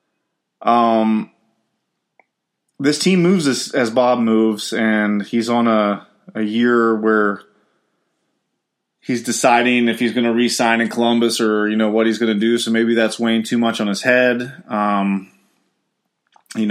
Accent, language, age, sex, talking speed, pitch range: American, English, 20-39, male, 155 wpm, 110-125 Hz